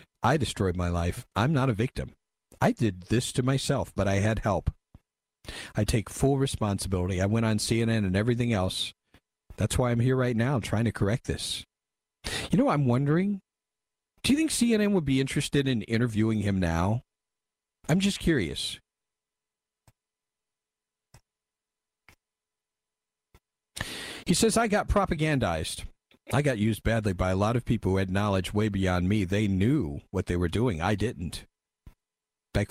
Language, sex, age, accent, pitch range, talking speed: English, male, 50-69, American, 95-130 Hz, 155 wpm